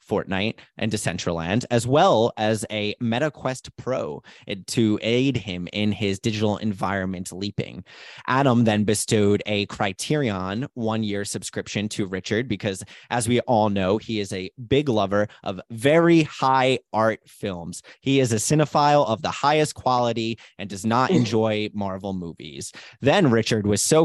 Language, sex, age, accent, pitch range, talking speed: English, male, 20-39, American, 105-125 Hz, 150 wpm